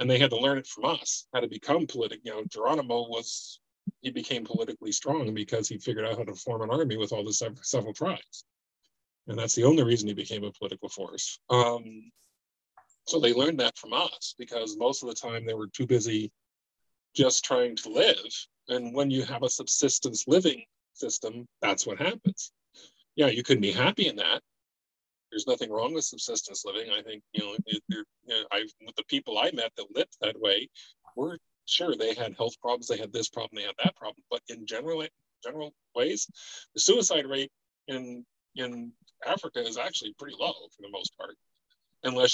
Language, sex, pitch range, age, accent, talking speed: English, male, 115-180 Hz, 40-59, American, 190 wpm